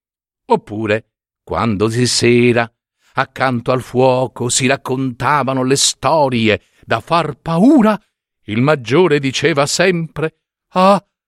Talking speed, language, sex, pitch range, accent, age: 100 wpm, Italian, male, 105-150 Hz, native, 50-69